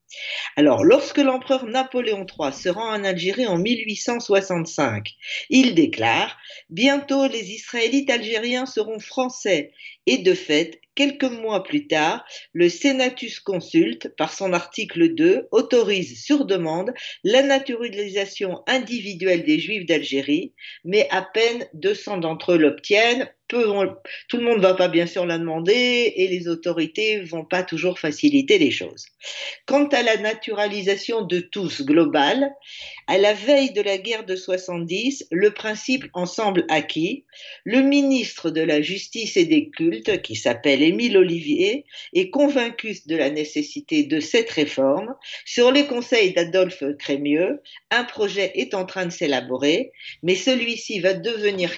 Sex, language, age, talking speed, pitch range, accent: female, French, 50-69, 145 wpm, 180-275 Hz, French